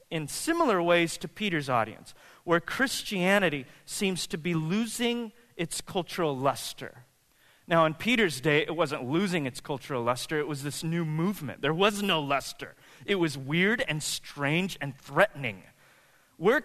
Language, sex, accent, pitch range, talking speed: English, male, American, 140-180 Hz, 150 wpm